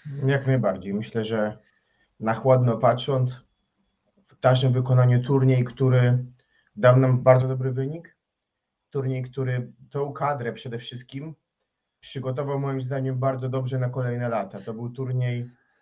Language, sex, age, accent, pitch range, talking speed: Polish, male, 30-49, native, 130-145 Hz, 130 wpm